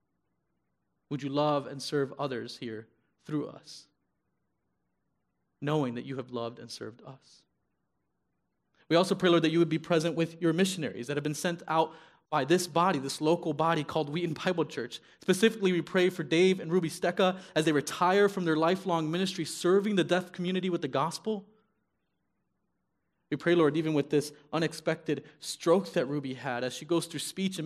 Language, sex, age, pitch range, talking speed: English, male, 30-49, 130-170 Hz, 180 wpm